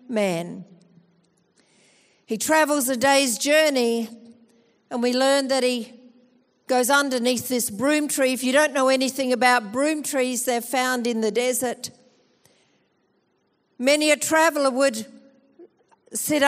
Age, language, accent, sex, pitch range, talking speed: 50-69, English, Australian, female, 230-275 Hz, 125 wpm